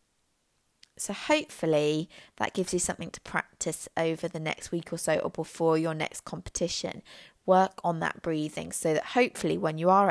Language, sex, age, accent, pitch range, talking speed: English, female, 20-39, British, 155-185 Hz, 170 wpm